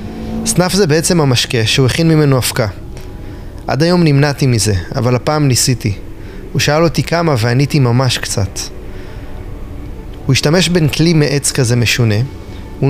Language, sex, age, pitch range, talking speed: Hebrew, male, 20-39, 105-150 Hz, 140 wpm